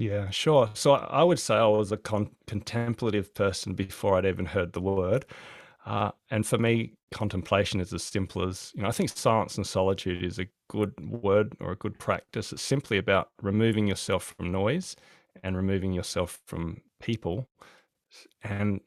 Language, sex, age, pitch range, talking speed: English, male, 20-39, 95-115 Hz, 170 wpm